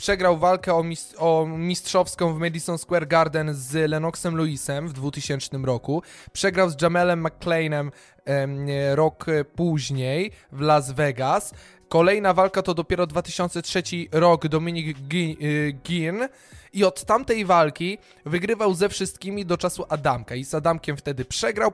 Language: Polish